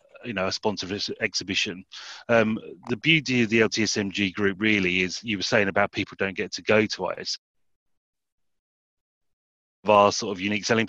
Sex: male